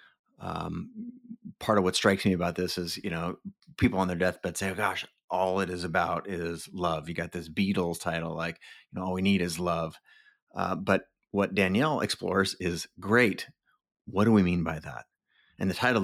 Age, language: 30-49, English